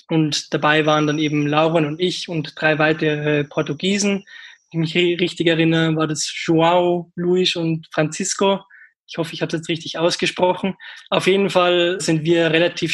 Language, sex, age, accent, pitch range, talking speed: German, male, 20-39, German, 160-180 Hz, 170 wpm